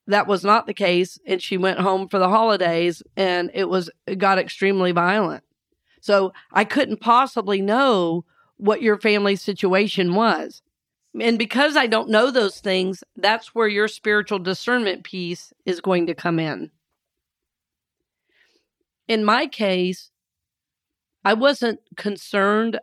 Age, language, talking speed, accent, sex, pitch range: 40-59, English, 140 wpm, American, female, 190-230 Hz